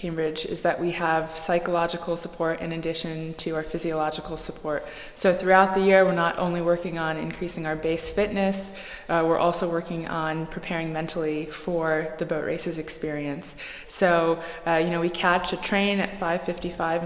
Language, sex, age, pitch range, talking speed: English, female, 20-39, 155-175 Hz, 170 wpm